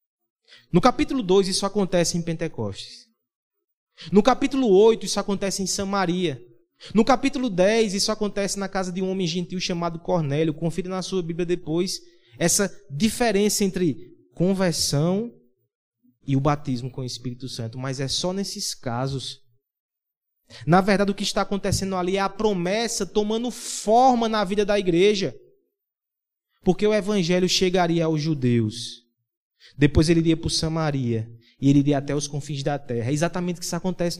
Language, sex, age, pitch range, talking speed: Portuguese, male, 20-39, 130-200 Hz, 160 wpm